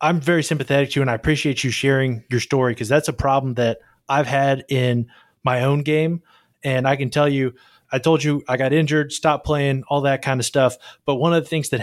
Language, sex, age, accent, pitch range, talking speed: English, male, 20-39, American, 130-155 Hz, 240 wpm